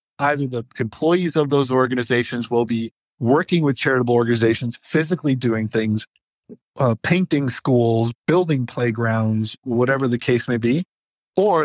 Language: English